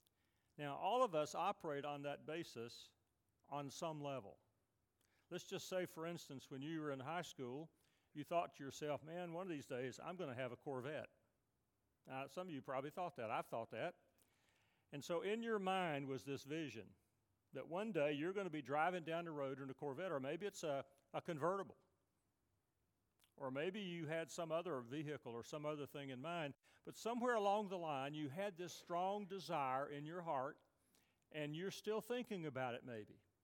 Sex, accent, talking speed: male, American, 195 wpm